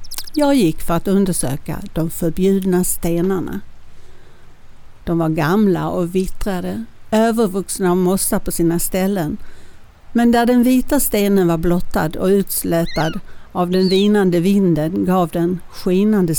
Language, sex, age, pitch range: Swedish, female, 60-79, 165-205 Hz